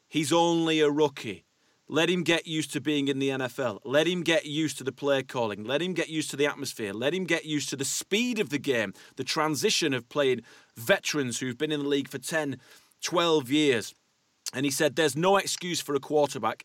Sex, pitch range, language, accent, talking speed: male, 130-165 Hz, English, British, 220 wpm